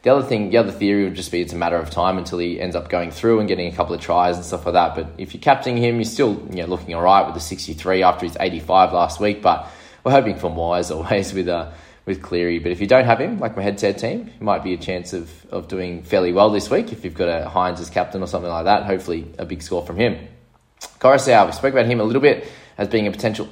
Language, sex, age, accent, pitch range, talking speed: English, male, 20-39, Australian, 90-110 Hz, 290 wpm